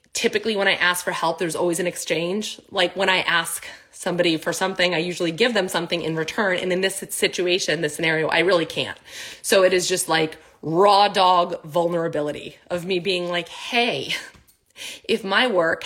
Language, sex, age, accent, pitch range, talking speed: English, female, 20-39, American, 160-200 Hz, 185 wpm